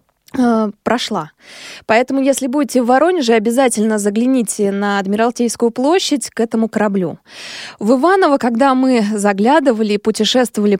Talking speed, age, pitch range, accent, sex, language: 115 wpm, 20-39, 215-275 Hz, native, female, Russian